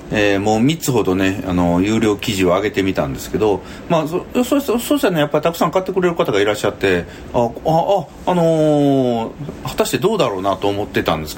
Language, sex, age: Japanese, male, 40-59